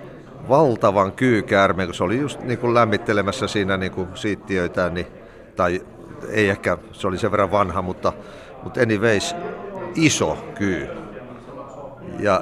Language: Finnish